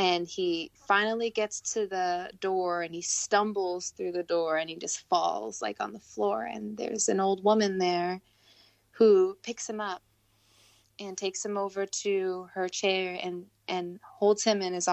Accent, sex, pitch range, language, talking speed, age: American, female, 175-195 Hz, English, 175 wpm, 20-39